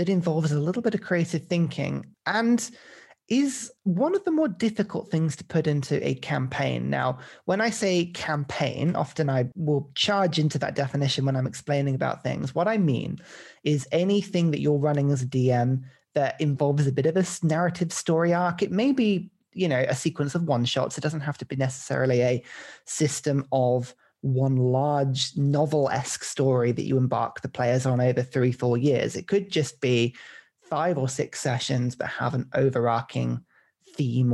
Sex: male